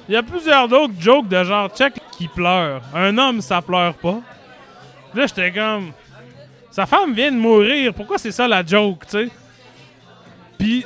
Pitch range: 180-240 Hz